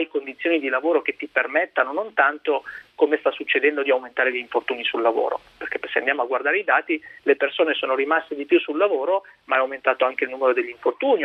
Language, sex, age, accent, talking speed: Italian, male, 40-59, native, 215 wpm